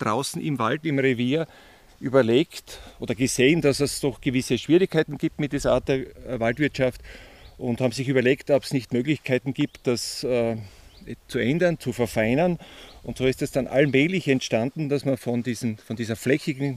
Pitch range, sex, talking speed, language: 125-145 Hz, male, 170 wpm, German